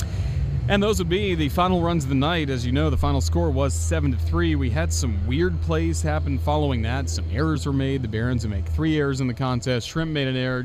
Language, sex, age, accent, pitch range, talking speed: English, male, 30-49, American, 85-140 Hz, 250 wpm